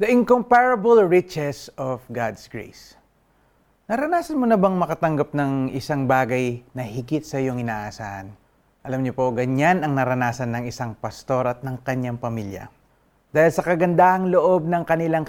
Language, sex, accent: Filipino, male, native